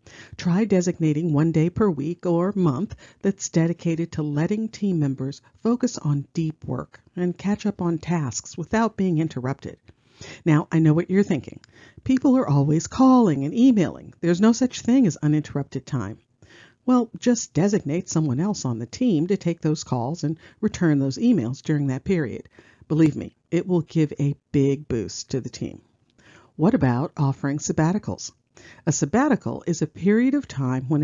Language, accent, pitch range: English, American, 135-195 Hz